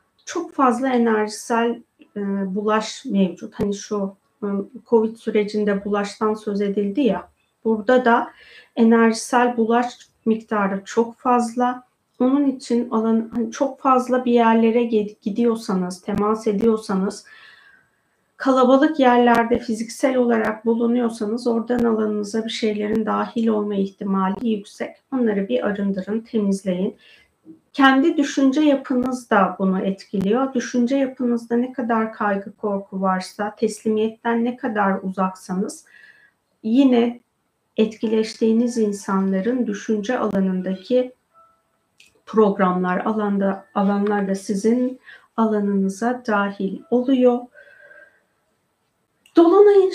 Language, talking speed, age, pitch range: Turkish, 90 wpm, 40-59, 205-250 Hz